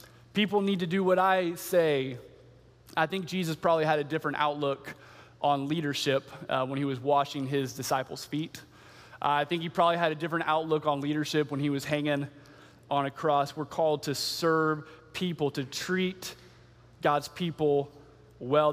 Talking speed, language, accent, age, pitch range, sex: 170 wpm, English, American, 20-39, 145-195 Hz, male